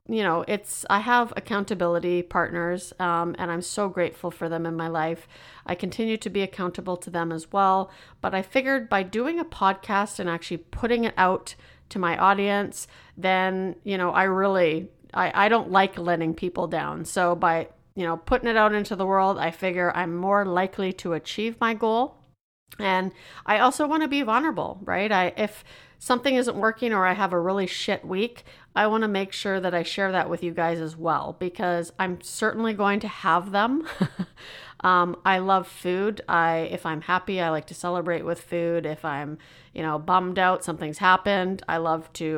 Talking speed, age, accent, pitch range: 195 wpm, 40-59, American, 170-205 Hz